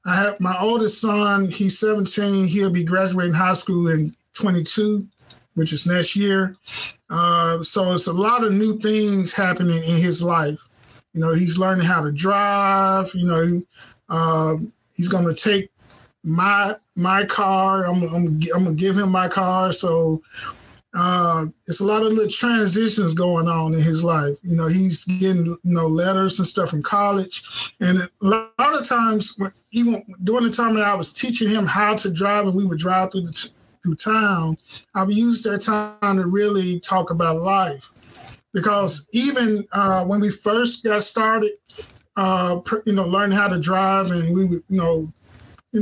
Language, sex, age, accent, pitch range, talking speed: English, male, 20-39, American, 170-205 Hz, 180 wpm